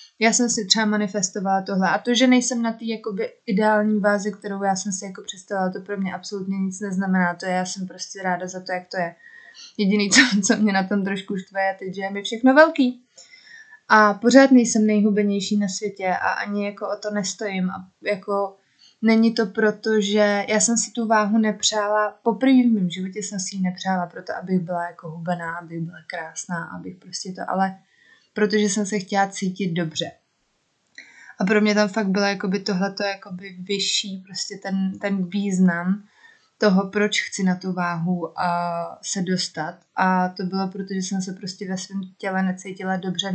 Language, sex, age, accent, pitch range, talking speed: Czech, female, 20-39, native, 185-215 Hz, 190 wpm